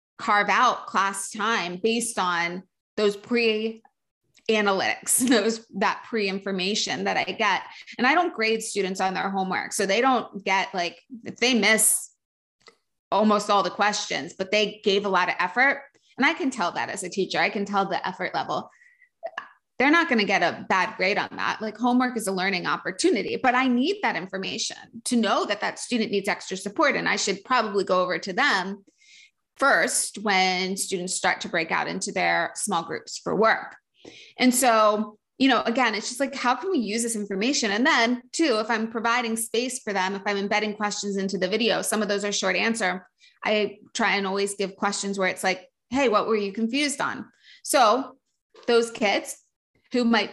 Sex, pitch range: female, 200-240 Hz